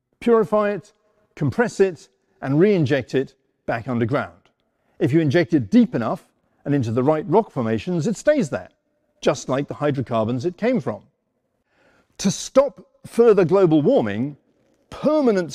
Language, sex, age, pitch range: Arabic, male, 50-69, 130-195 Hz